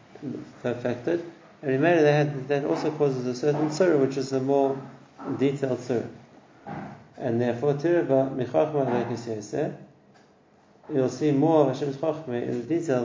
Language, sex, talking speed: English, male, 140 wpm